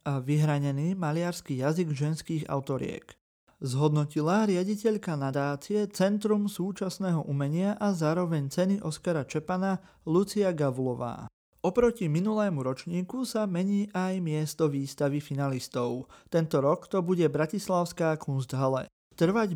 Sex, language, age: male, Slovak, 30-49